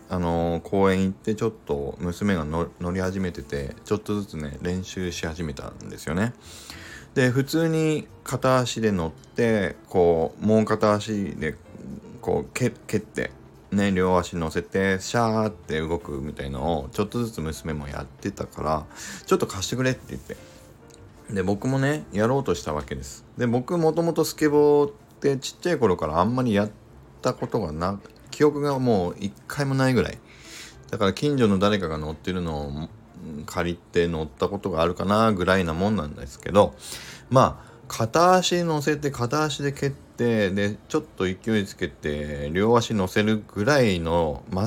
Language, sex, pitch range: Japanese, male, 85-120 Hz